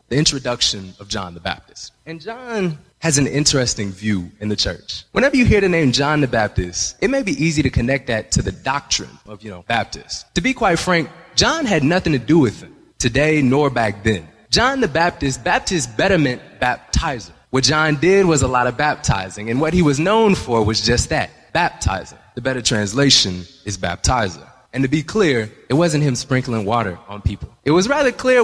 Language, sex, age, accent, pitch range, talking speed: English, male, 20-39, American, 110-155 Hz, 205 wpm